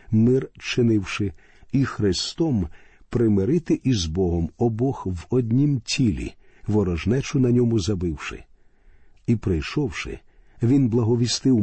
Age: 50-69